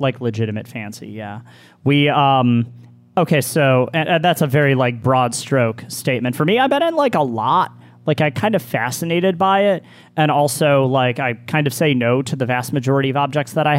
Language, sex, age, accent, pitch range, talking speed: English, male, 30-49, American, 120-155 Hz, 210 wpm